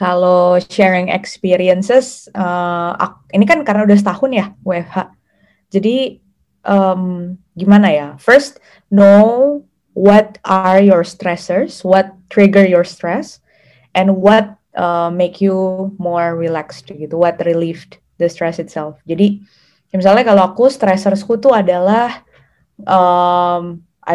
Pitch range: 170-200 Hz